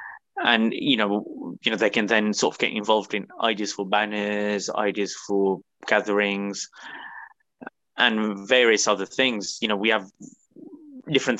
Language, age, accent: English, 20-39, British